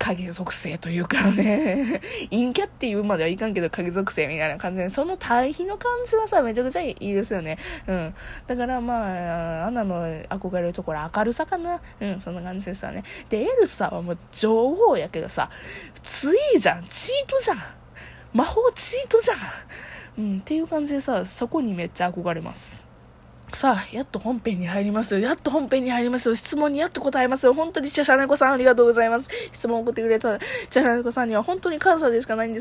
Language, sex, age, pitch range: Japanese, female, 20-39, 195-320 Hz